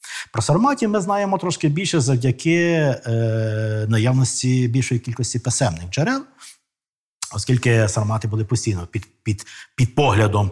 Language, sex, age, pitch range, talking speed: Ukrainian, male, 50-69, 105-150 Hz, 120 wpm